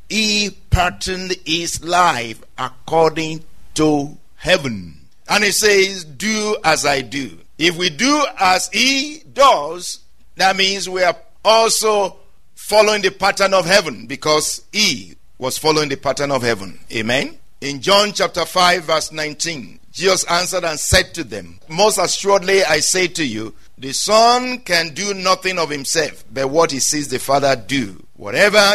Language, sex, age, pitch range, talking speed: English, male, 50-69, 135-200 Hz, 150 wpm